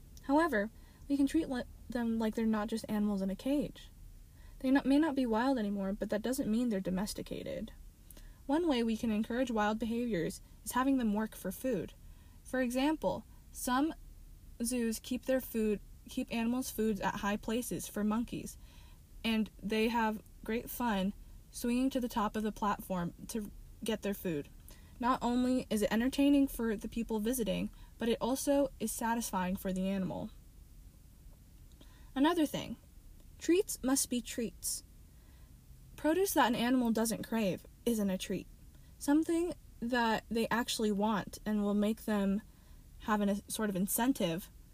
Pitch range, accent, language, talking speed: 195-245 Hz, American, English, 155 wpm